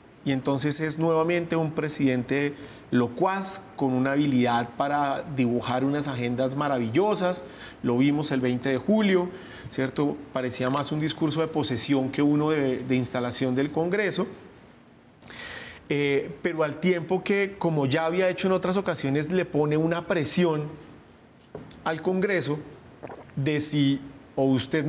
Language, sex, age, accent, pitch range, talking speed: Spanish, male, 40-59, Colombian, 135-175 Hz, 135 wpm